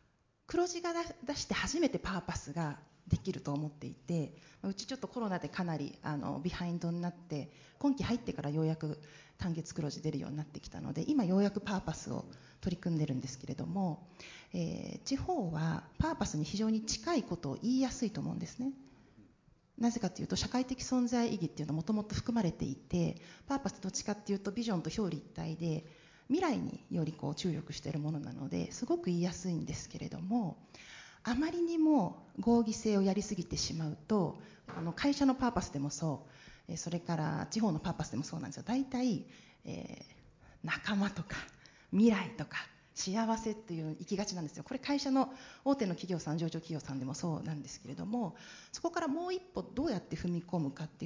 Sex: female